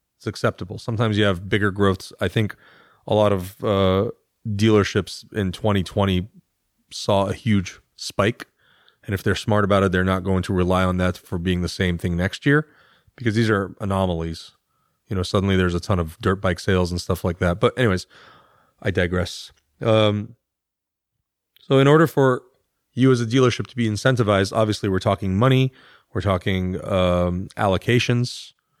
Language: English